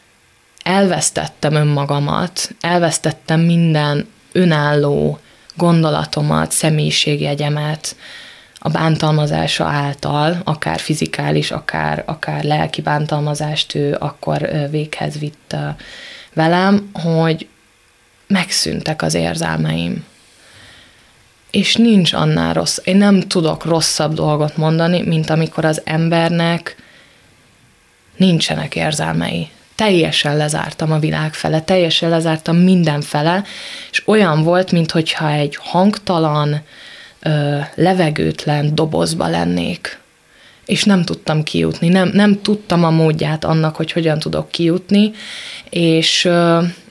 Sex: female